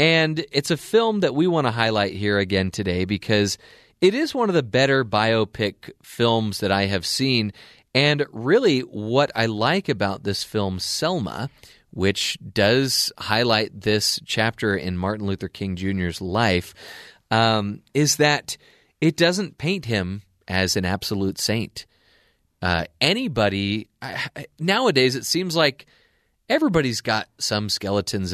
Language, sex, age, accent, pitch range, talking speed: English, male, 30-49, American, 100-135 Hz, 140 wpm